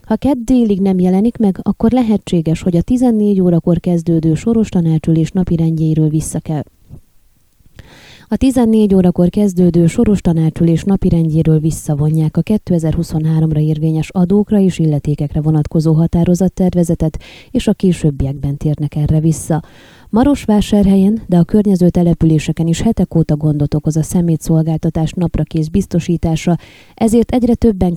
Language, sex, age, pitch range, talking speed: Hungarian, female, 20-39, 155-195 Hz, 125 wpm